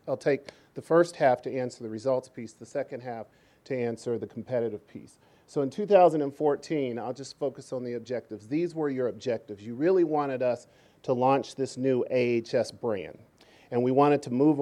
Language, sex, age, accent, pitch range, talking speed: English, male, 40-59, American, 115-140 Hz, 190 wpm